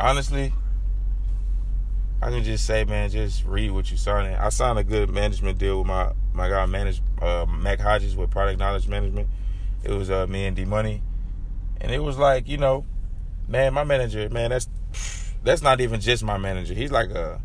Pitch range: 95-110 Hz